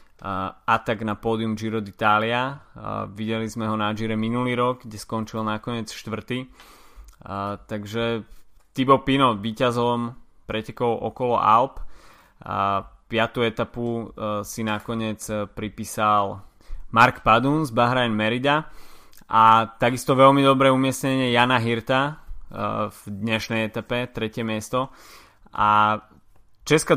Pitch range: 105-120 Hz